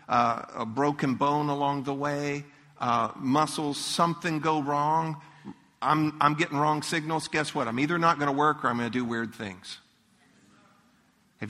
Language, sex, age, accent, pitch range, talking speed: English, male, 50-69, American, 135-165 Hz, 170 wpm